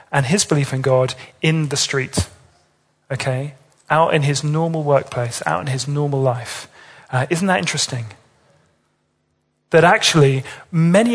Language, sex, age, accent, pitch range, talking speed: English, male, 40-59, British, 135-155 Hz, 140 wpm